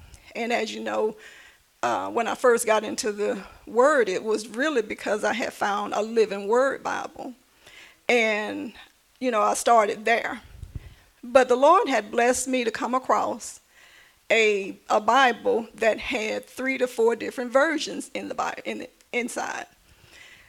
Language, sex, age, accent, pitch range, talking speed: English, female, 40-59, American, 230-275 Hz, 155 wpm